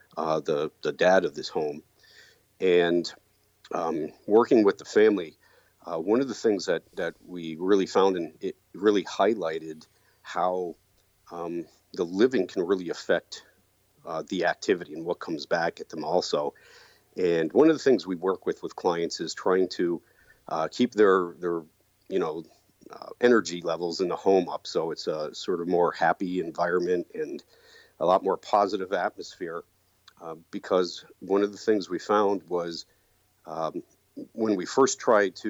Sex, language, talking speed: male, English, 165 wpm